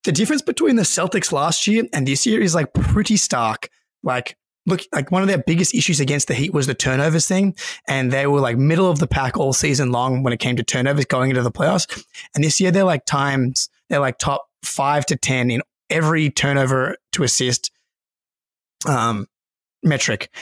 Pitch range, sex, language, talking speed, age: 130-170 Hz, male, English, 200 wpm, 20-39